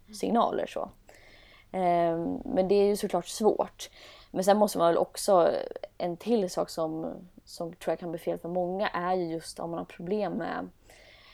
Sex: female